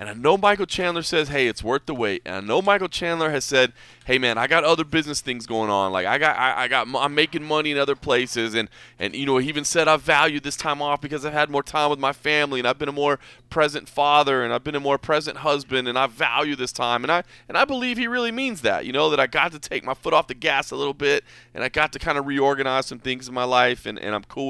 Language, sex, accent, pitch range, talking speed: English, male, American, 125-155 Hz, 290 wpm